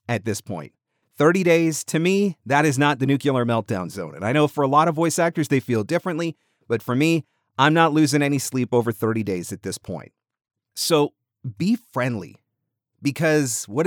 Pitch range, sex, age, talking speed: 115-150 Hz, male, 30-49, 195 wpm